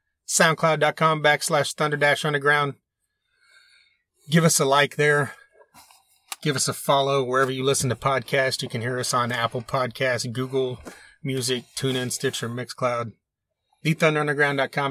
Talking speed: 120 wpm